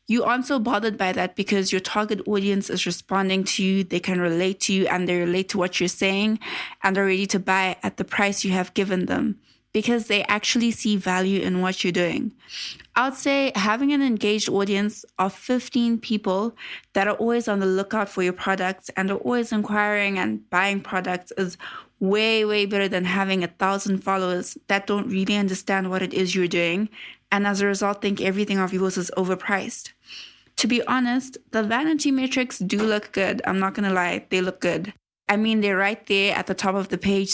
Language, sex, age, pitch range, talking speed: English, female, 20-39, 185-215 Hz, 205 wpm